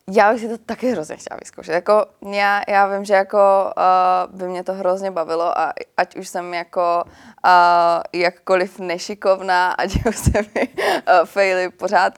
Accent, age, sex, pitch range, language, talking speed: native, 20-39, female, 165-190 Hz, Czech, 170 wpm